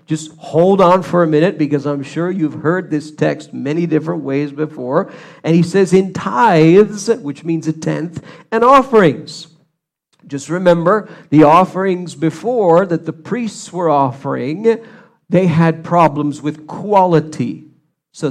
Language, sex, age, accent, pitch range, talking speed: English, male, 50-69, American, 145-175 Hz, 145 wpm